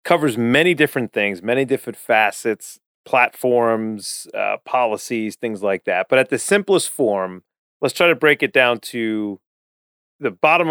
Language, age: English, 40-59